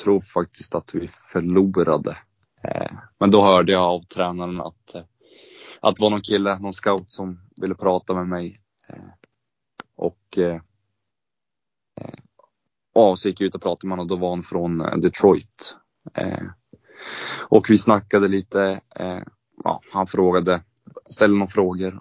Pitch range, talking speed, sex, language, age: 90-100 Hz, 140 wpm, male, Swedish, 20-39